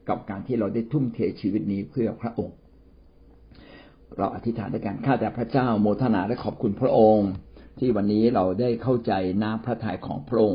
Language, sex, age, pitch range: Thai, male, 60-79, 95-115 Hz